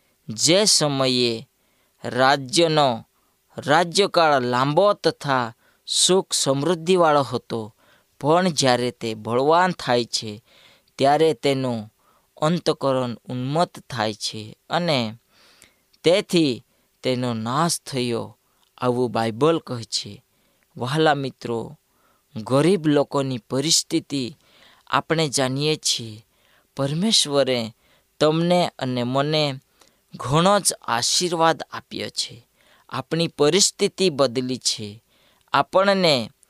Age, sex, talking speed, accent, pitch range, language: 20-39, female, 85 wpm, native, 120-160 Hz, Gujarati